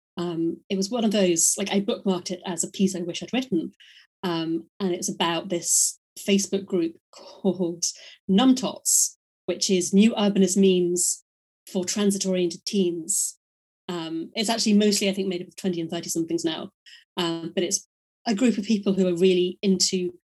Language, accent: English, British